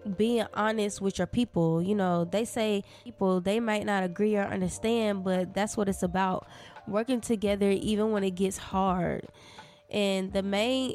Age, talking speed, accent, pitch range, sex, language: 10-29, 170 wpm, American, 180-205 Hz, female, English